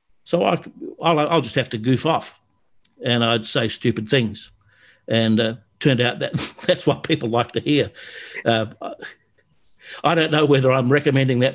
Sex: male